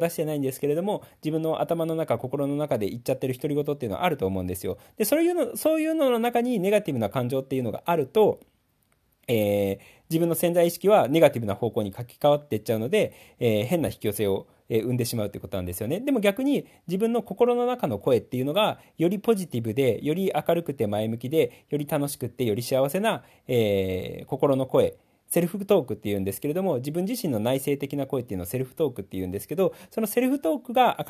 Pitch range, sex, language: 125-205 Hz, male, Japanese